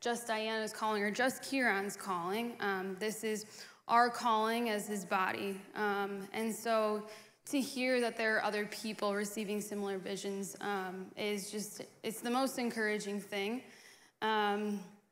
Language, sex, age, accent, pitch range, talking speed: English, female, 10-29, American, 205-225 Hz, 145 wpm